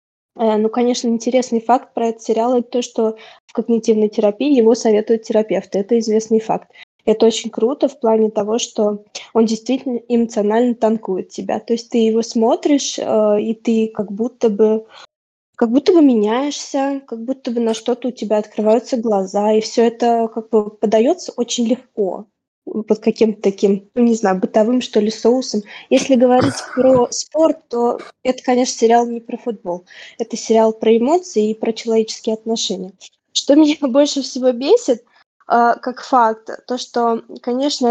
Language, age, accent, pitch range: Russian, 20-39, native, 220-250 Hz